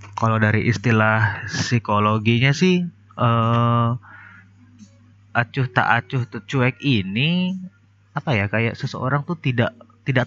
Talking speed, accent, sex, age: 110 wpm, native, male, 30-49